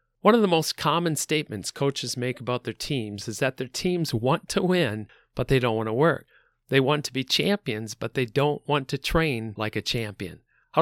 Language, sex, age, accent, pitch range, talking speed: English, male, 40-59, American, 115-150 Hz, 215 wpm